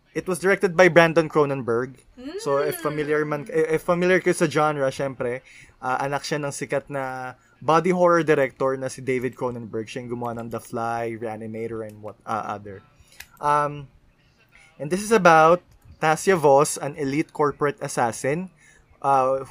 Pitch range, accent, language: 120-160 Hz, native, Filipino